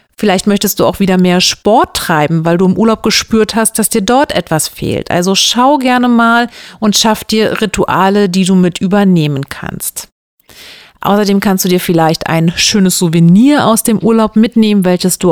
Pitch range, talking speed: 185-225 Hz, 180 wpm